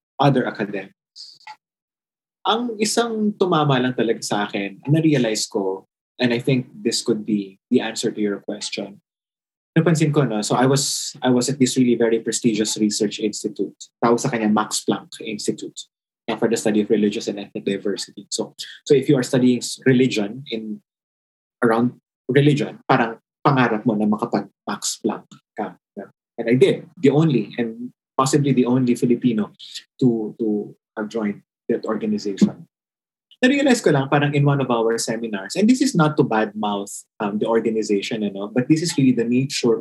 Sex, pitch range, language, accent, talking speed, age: male, 110-145 Hz, English, Filipino, 170 wpm, 20-39